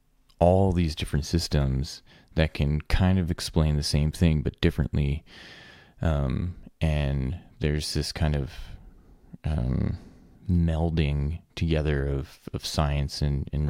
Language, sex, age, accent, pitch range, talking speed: English, male, 20-39, American, 75-85 Hz, 125 wpm